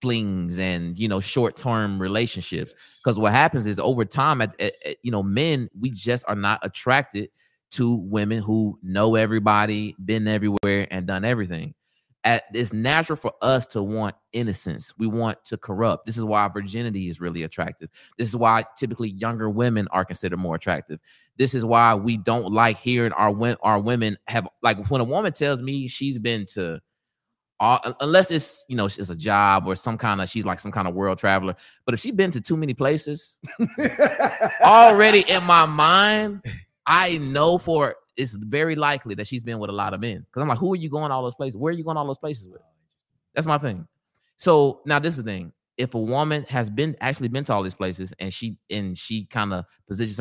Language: English